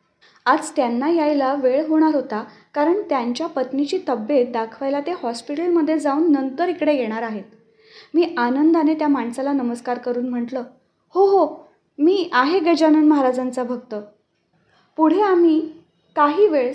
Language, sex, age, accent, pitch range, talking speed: Marathi, female, 20-39, native, 235-310 Hz, 130 wpm